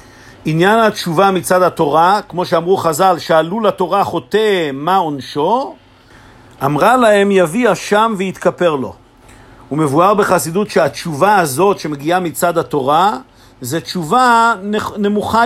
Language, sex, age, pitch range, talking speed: Hebrew, male, 50-69, 170-215 Hz, 115 wpm